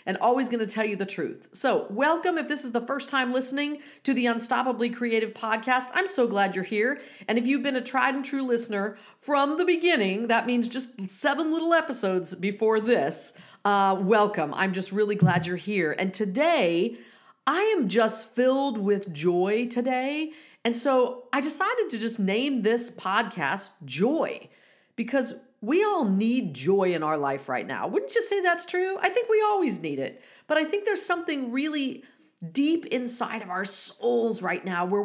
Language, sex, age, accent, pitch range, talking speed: English, female, 40-59, American, 205-280 Hz, 185 wpm